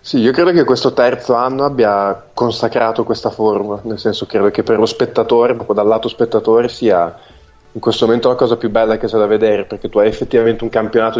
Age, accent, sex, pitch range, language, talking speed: 20-39, native, male, 110-115 Hz, Italian, 215 wpm